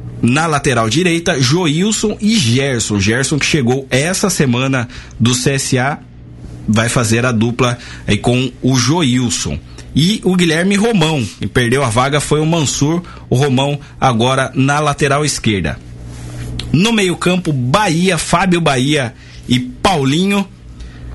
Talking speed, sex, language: 130 wpm, male, Portuguese